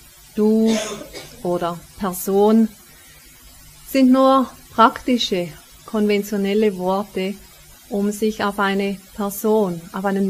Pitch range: 185-225 Hz